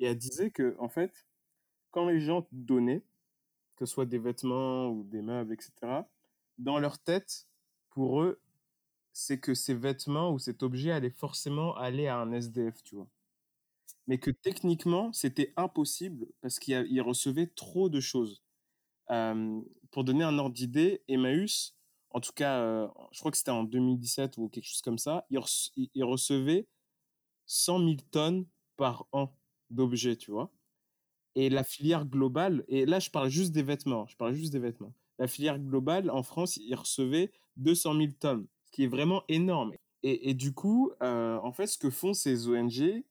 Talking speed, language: 175 wpm, French